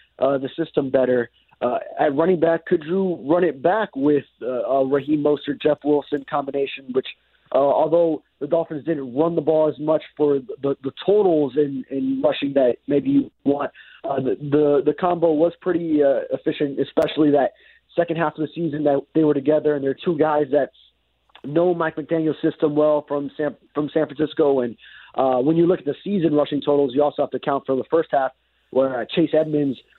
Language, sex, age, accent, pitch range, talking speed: English, male, 30-49, American, 135-165 Hz, 200 wpm